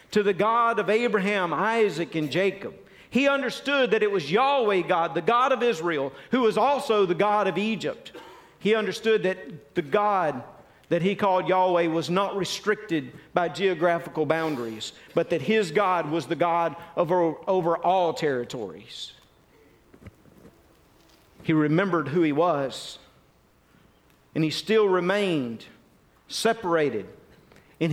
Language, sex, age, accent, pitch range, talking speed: English, male, 50-69, American, 160-210 Hz, 135 wpm